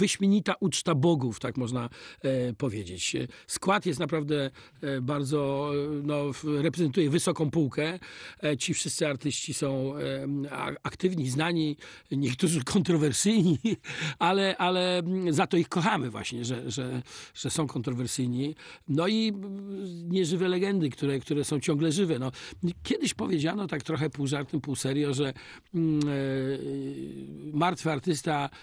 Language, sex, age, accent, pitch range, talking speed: Polish, male, 50-69, native, 140-170 Hz, 130 wpm